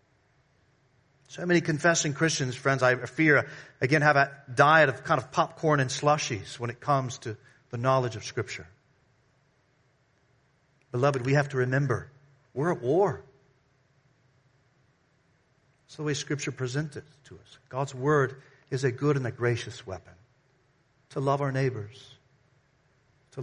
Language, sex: English, male